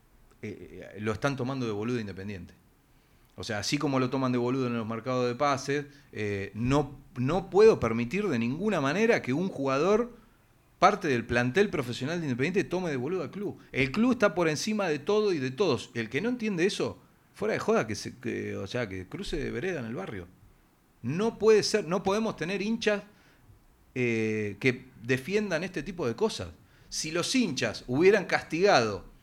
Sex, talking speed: male, 190 wpm